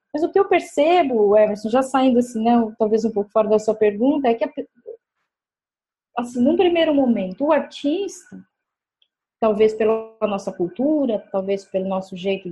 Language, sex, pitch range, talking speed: Portuguese, female, 215-310 Hz, 165 wpm